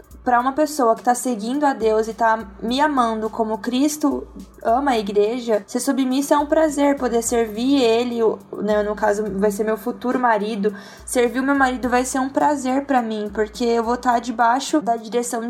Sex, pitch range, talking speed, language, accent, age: female, 215-265 Hz, 195 wpm, Portuguese, Brazilian, 10-29